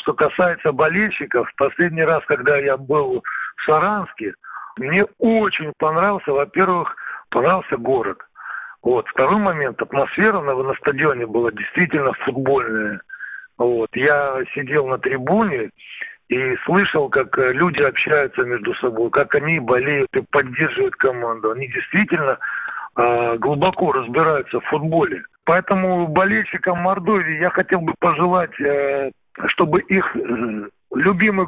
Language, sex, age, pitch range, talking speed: Russian, male, 60-79, 140-200 Hz, 120 wpm